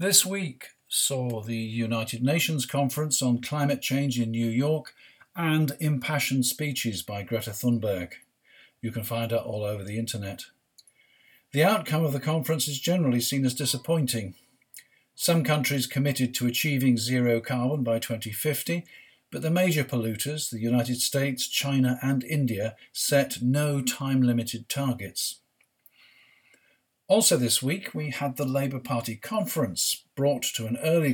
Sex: male